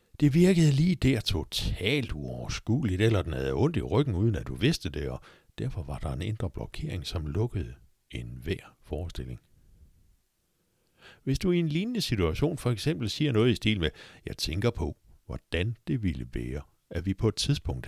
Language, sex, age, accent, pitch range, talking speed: Danish, male, 60-79, native, 75-120 Hz, 180 wpm